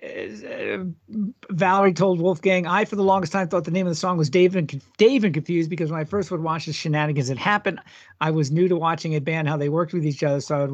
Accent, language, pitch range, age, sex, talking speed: American, English, 160-200 Hz, 50-69, male, 265 wpm